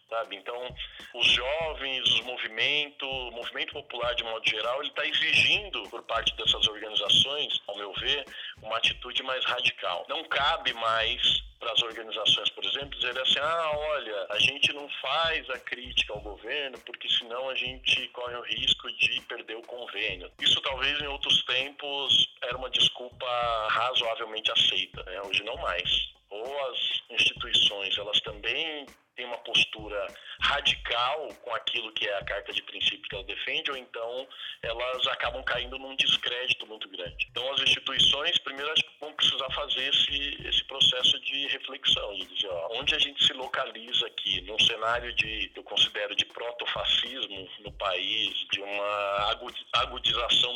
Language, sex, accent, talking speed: Portuguese, male, Brazilian, 160 wpm